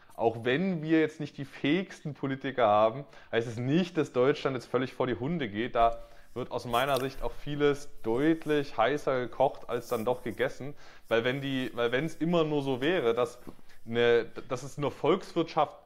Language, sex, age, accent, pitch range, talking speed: German, male, 20-39, German, 115-150 Hz, 190 wpm